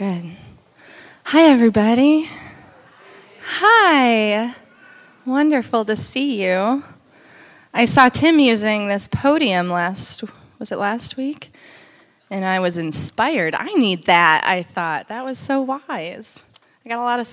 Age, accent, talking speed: 20-39, American, 130 wpm